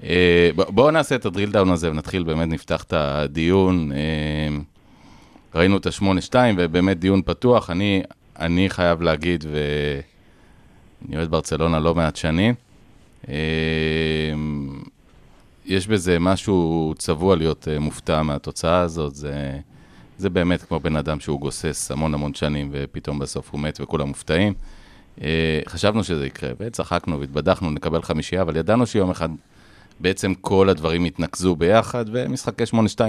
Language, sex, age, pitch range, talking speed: Hebrew, male, 30-49, 80-95 Hz, 125 wpm